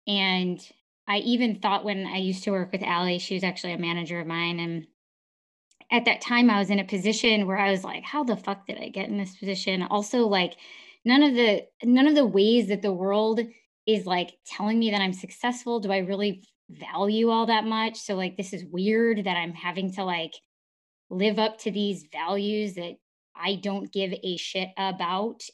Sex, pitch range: female, 185-225 Hz